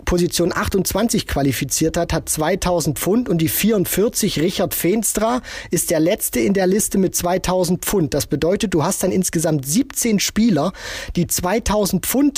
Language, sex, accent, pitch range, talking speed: German, male, German, 155-190 Hz, 155 wpm